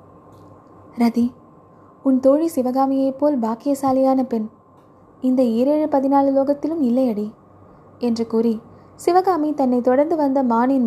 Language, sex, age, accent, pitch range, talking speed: Tamil, female, 20-39, native, 230-280 Hz, 105 wpm